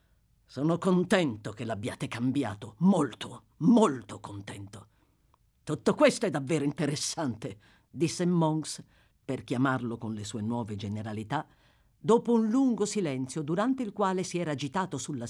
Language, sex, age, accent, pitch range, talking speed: Italian, female, 50-69, native, 125-190 Hz, 130 wpm